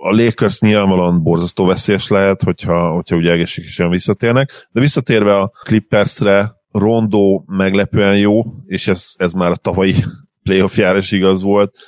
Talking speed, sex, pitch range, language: 145 wpm, male, 85-95 Hz, Hungarian